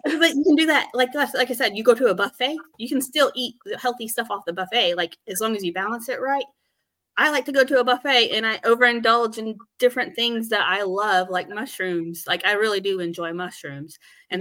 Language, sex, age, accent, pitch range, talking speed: English, female, 20-39, American, 170-225 Hz, 235 wpm